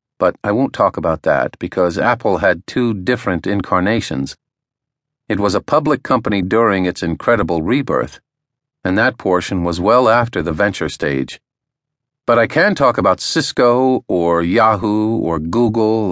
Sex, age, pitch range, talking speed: male, 50-69, 90-120 Hz, 150 wpm